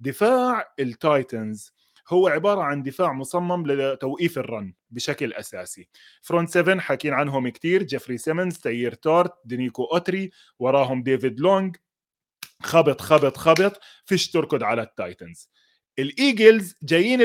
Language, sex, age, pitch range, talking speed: Arabic, male, 20-39, 145-195 Hz, 120 wpm